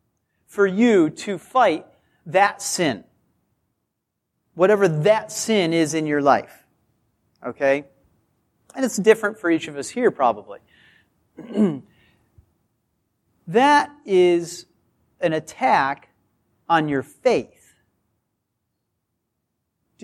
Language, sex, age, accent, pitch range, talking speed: English, male, 40-59, American, 150-215 Hz, 95 wpm